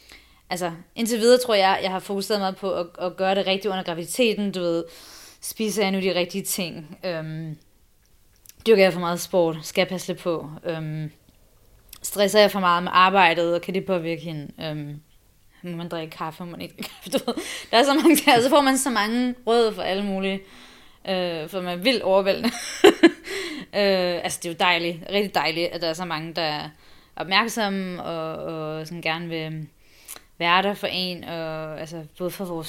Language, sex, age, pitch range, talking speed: Danish, female, 20-39, 165-200 Hz, 195 wpm